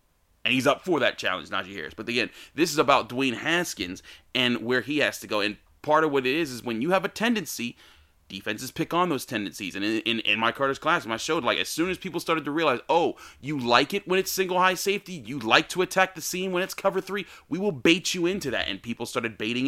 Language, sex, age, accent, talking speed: English, male, 30-49, American, 260 wpm